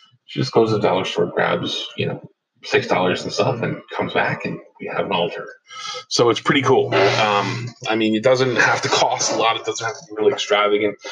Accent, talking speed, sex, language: American, 225 wpm, male, English